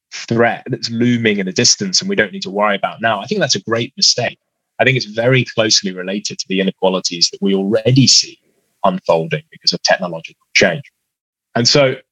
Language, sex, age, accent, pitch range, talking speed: English, male, 20-39, British, 100-135 Hz, 200 wpm